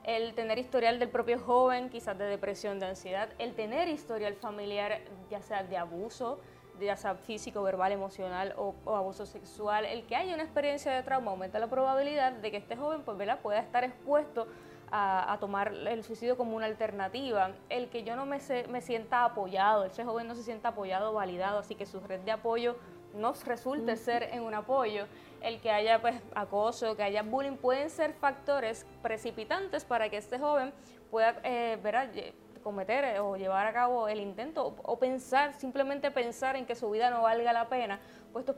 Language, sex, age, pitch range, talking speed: English, female, 20-39, 205-250 Hz, 190 wpm